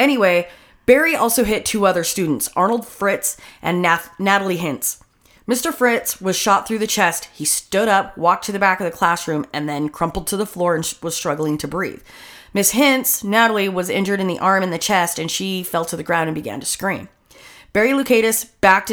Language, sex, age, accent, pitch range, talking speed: English, female, 30-49, American, 170-210 Hz, 205 wpm